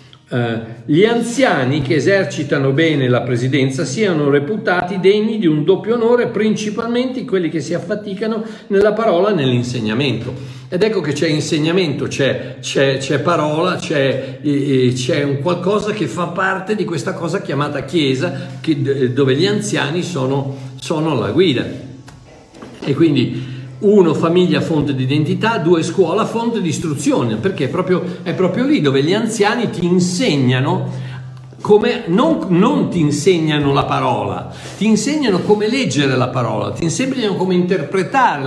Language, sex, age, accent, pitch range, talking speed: Italian, male, 50-69, native, 140-205 Hz, 145 wpm